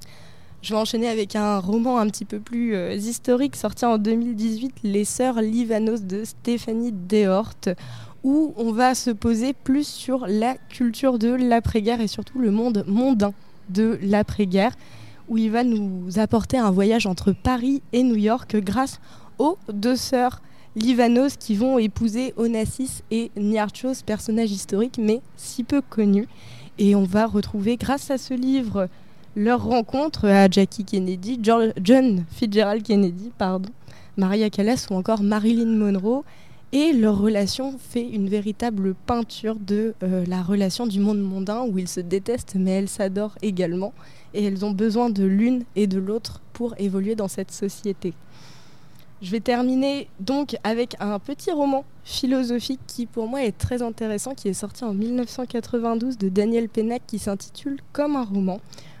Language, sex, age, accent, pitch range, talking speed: French, female, 20-39, French, 200-245 Hz, 160 wpm